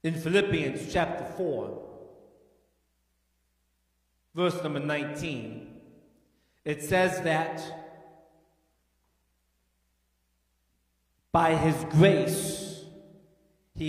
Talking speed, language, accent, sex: 60 wpm, English, American, male